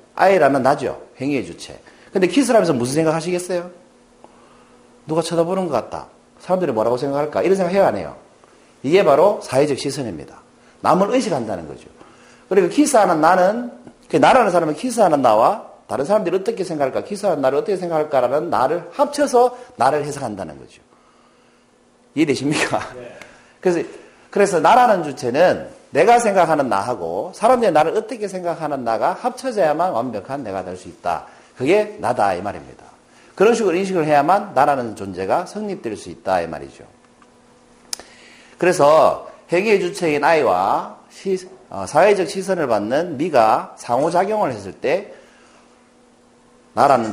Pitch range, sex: 150-205 Hz, male